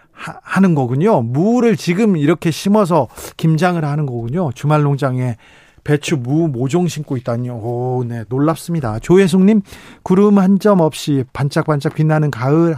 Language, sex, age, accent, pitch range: Korean, male, 40-59, native, 135-175 Hz